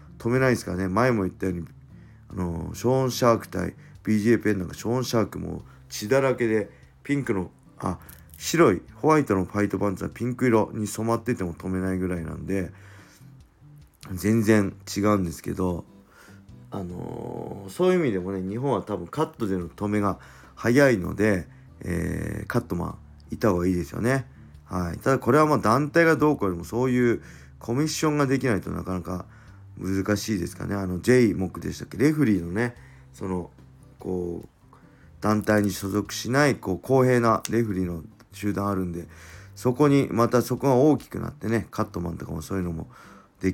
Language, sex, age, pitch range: Japanese, male, 40-59, 90-115 Hz